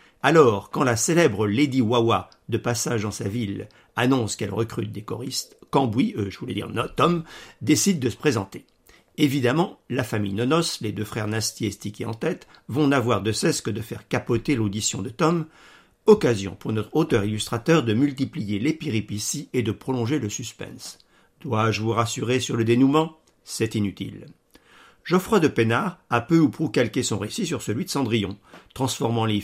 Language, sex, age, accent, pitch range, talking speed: French, male, 50-69, French, 105-140 Hz, 175 wpm